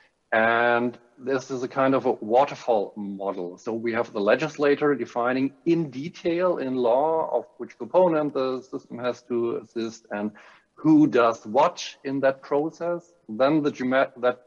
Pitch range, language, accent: 115-145 Hz, English, German